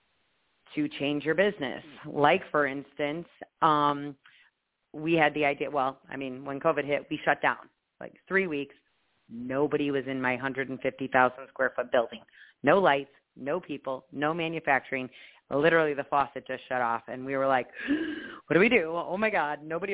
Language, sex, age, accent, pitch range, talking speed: English, female, 30-49, American, 135-165 Hz, 170 wpm